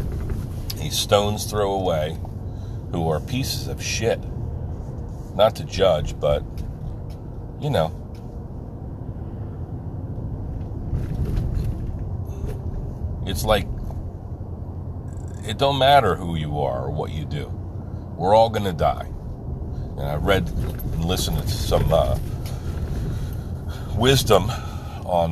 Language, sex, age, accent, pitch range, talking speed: English, male, 50-69, American, 85-110 Hz, 95 wpm